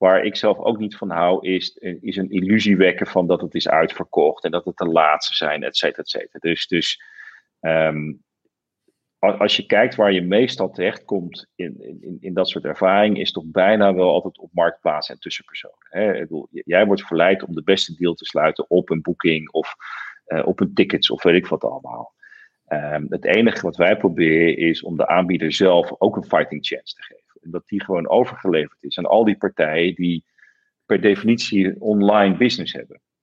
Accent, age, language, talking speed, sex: Dutch, 40-59, Dutch, 200 wpm, male